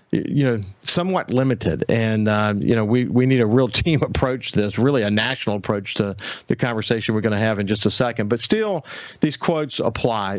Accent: American